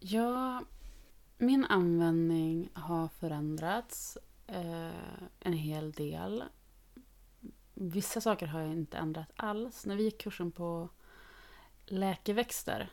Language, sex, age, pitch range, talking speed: Swedish, female, 30-49, 160-195 Hz, 100 wpm